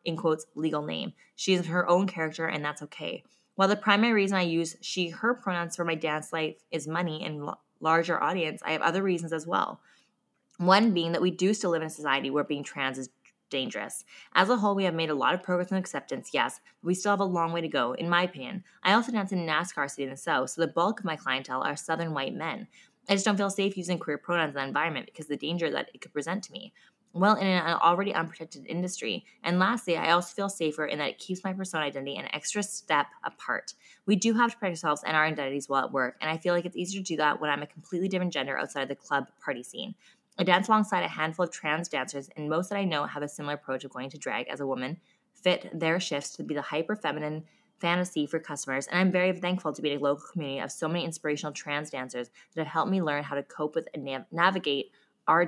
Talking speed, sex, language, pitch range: 255 wpm, female, English, 150-190 Hz